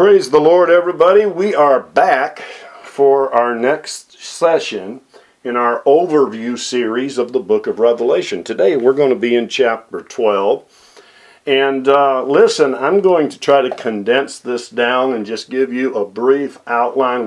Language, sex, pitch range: English, male, 115-140 Hz